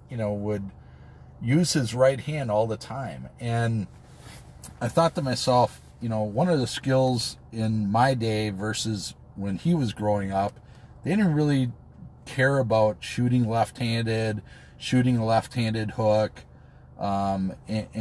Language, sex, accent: English, male, American